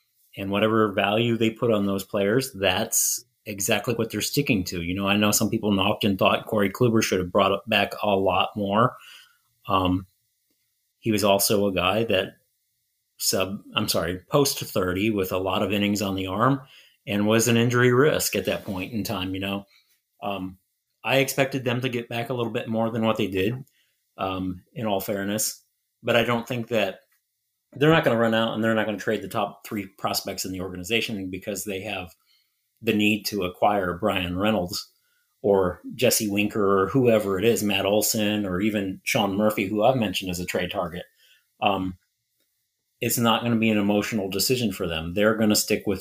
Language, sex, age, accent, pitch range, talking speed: English, male, 30-49, American, 95-115 Hz, 200 wpm